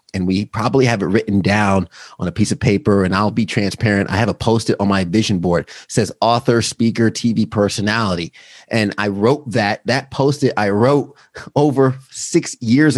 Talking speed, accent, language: 190 wpm, American, English